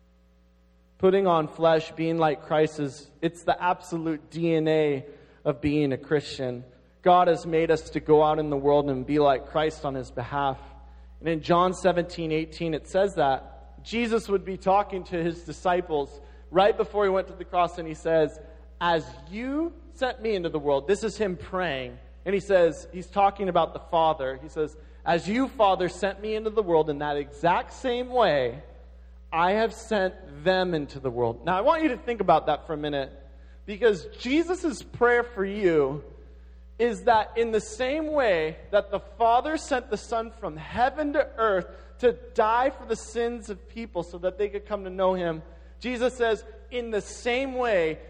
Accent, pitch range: American, 150-210 Hz